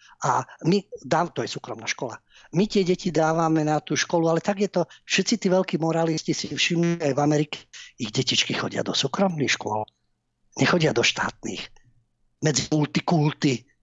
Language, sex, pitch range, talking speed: Slovak, male, 130-175 Hz, 165 wpm